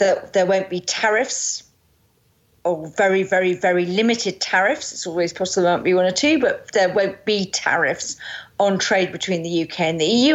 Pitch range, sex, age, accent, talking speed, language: 175-200 Hz, female, 40-59, British, 190 wpm, English